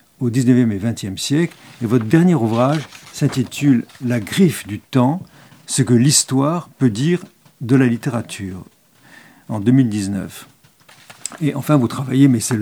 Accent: French